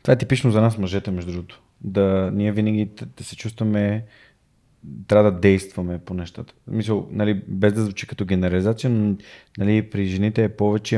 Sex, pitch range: male, 95-110 Hz